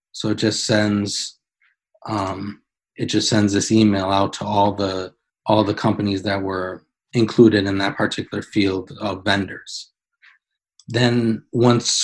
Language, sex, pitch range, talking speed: English, male, 100-110 Hz, 140 wpm